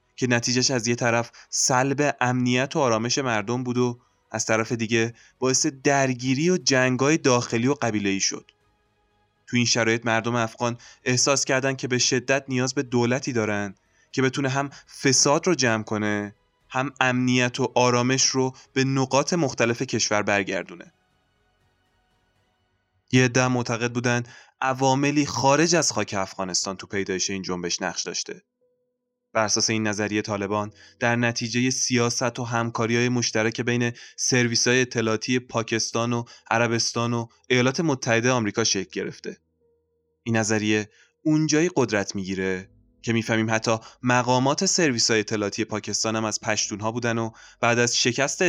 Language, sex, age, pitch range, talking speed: Persian, male, 20-39, 105-130 Hz, 135 wpm